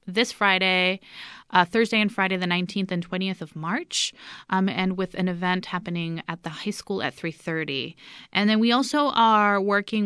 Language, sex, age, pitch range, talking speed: English, female, 20-39, 170-200 Hz, 180 wpm